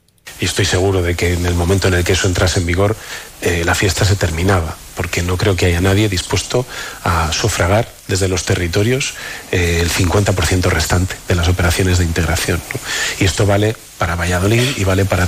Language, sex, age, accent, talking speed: Spanish, male, 40-59, Spanish, 195 wpm